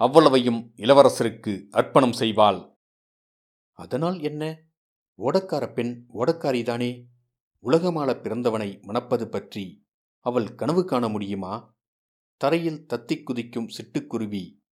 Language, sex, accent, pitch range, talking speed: Tamil, male, native, 110-140 Hz, 90 wpm